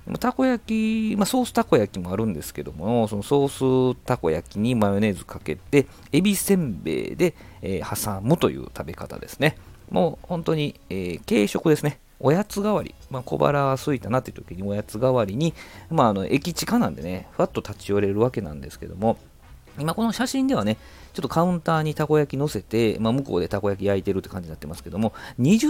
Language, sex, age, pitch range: Japanese, male, 40-59, 100-155 Hz